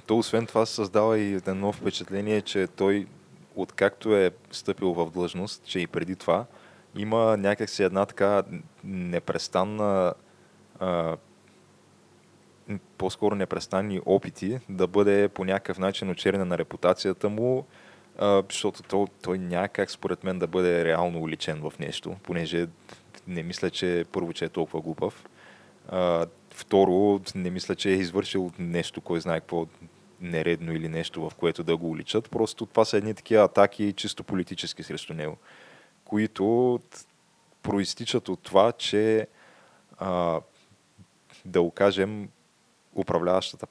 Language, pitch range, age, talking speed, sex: Bulgarian, 90-100 Hz, 20-39, 135 wpm, male